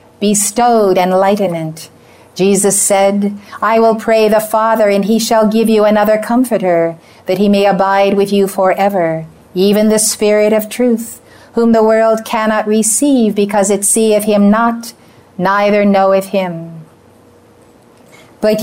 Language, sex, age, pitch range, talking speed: English, female, 50-69, 190-220 Hz, 135 wpm